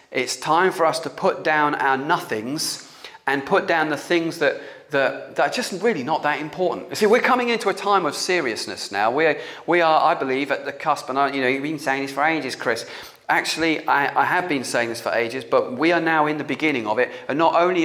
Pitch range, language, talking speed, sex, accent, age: 130-170 Hz, English, 240 wpm, male, British, 40-59